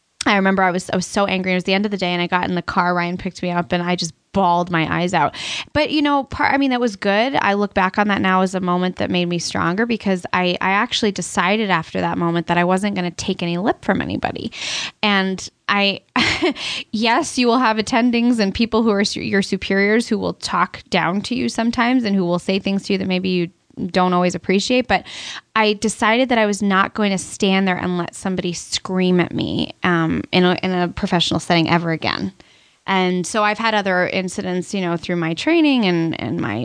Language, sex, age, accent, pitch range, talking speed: English, female, 10-29, American, 175-215 Hz, 240 wpm